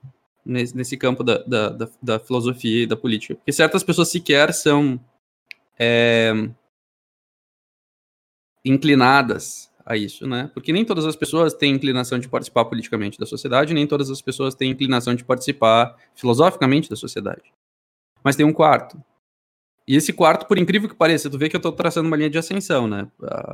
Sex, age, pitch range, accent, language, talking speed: male, 20-39, 125-155 Hz, Brazilian, Portuguese, 160 wpm